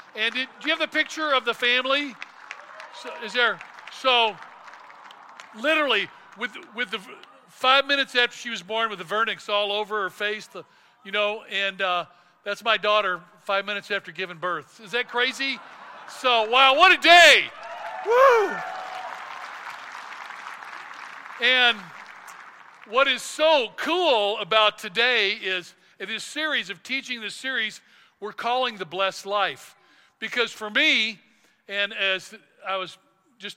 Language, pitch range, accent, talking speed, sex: English, 185-245 Hz, American, 145 wpm, male